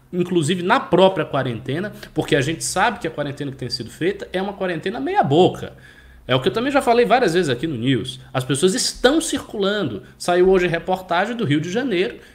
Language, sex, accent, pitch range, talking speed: Portuguese, male, Brazilian, 155-245 Hz, 210 wpm